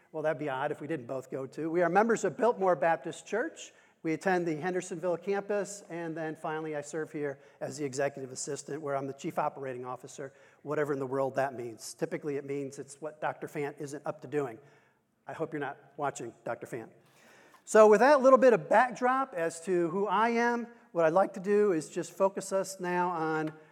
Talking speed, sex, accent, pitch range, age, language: 215 wpm, male, American, 150-195 Hz, 50-69, English